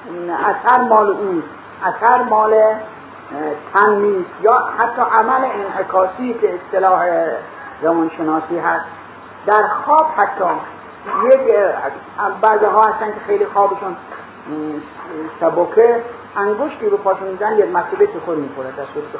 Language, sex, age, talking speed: Persian, male, 50-69, 105 wpm